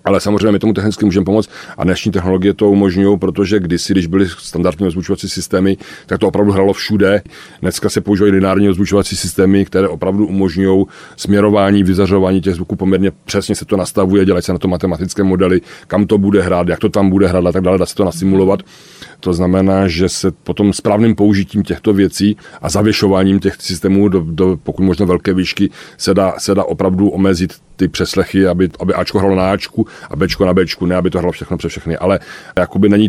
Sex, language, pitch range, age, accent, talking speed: male, Czech, 90-100 Hz, 40-59, native, 200 wpm